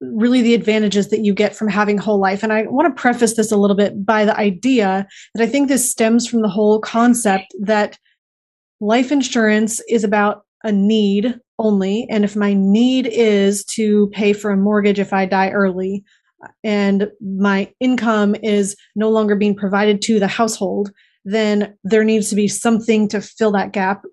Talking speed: 185 wpm